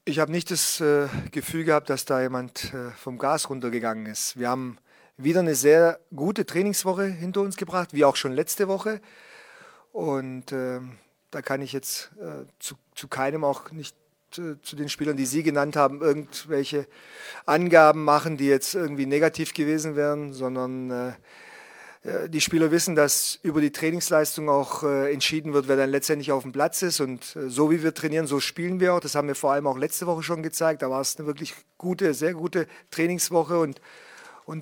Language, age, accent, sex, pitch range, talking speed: German, 40-59, German, male, 140-175 Hz, 185 wpm